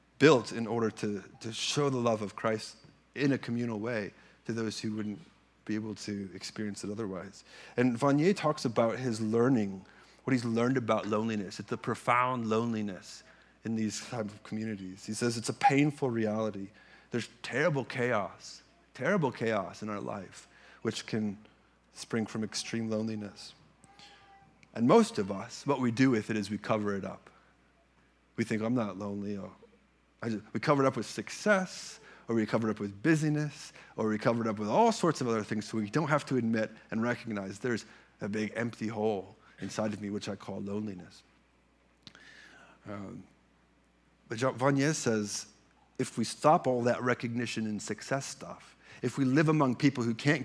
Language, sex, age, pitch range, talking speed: English, male, 30-49, 105-125 Hz, 175 wpm